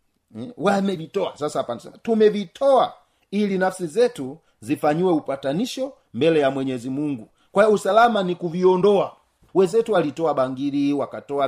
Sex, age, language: male, 40-59, Swahili